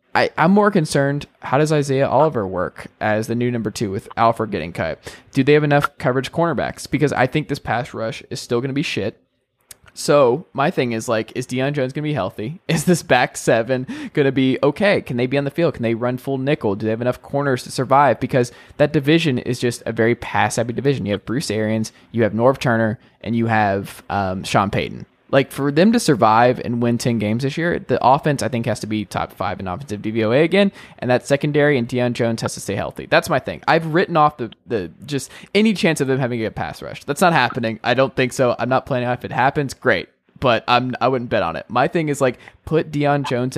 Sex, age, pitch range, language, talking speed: male, 20-39, 115-145 Hz, English, 245 wpm